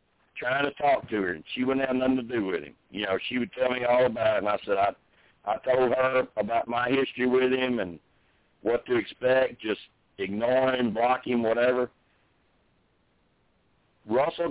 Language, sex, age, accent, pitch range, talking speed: English, male, 60-79, American, 120-145 Hz, 190 wpm